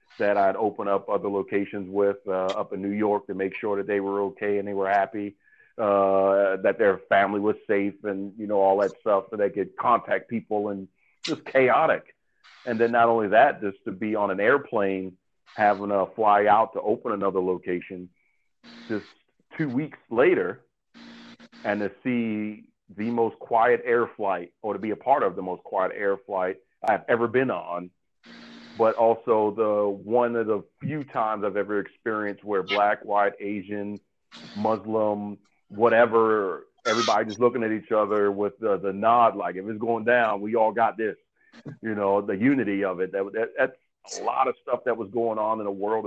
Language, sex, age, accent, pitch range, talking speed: English, male, 40-59, American, 100-115 Hz, 190 wpm